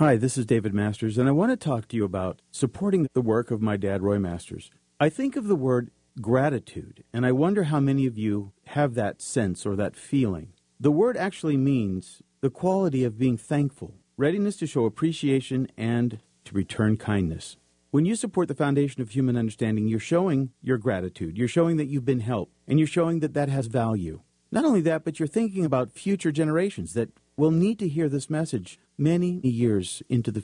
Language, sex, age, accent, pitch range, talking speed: English, male, 50-69, American, 110-150 Hz, 200 wpm